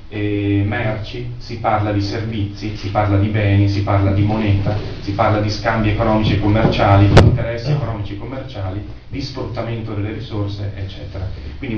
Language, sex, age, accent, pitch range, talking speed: Italian, male, 30-49, native, 100-120 Hz, 165 wpm